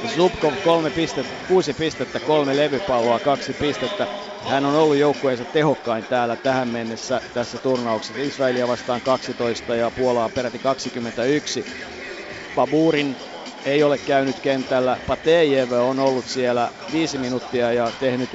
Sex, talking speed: male, 125 wpm